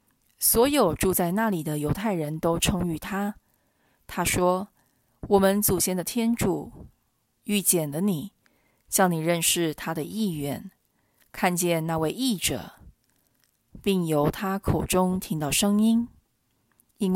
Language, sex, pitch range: Chinese, female, 150-200 Hz